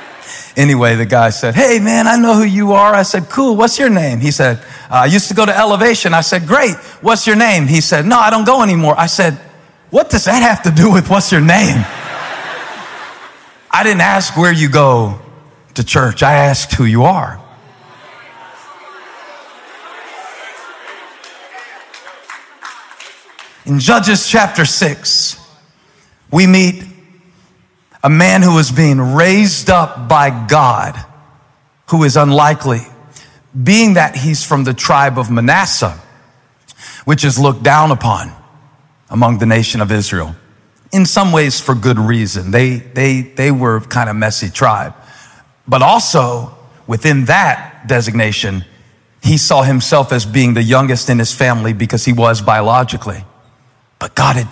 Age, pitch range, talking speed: 40-59, 120-175 Hz, 150 wpm